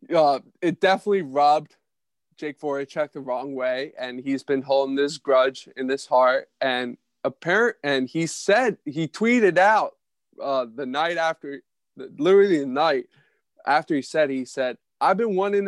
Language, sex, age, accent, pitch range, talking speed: English, male, 20-39, American, 135-190 Hz, 160 wpm